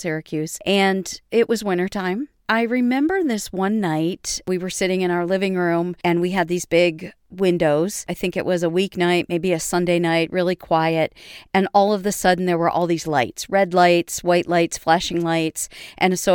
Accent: American